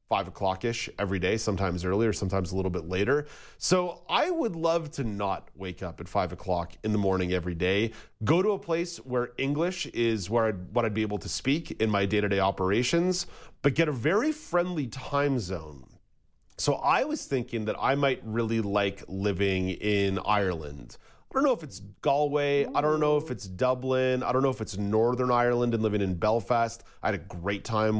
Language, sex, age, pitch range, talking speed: English, male, 30-49, 100-140 Hz, 200 wpm